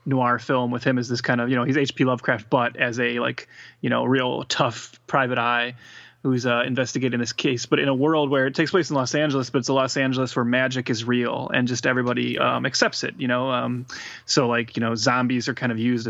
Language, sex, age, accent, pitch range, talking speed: English, male, 20-39, American, 120-140 Hz, 245 wpm